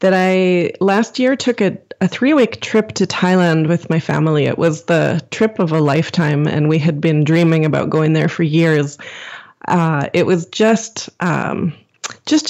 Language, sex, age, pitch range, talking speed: English, female, 20-39, 165-200 Hz, 180 wpm